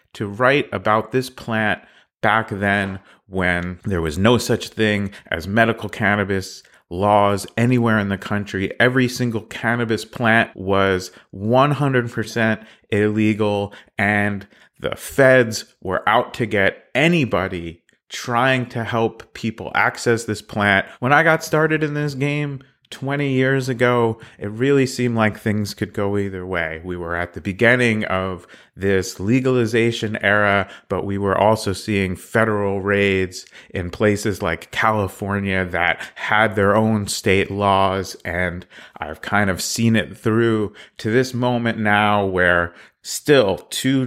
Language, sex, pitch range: English, male, 95-115 Hz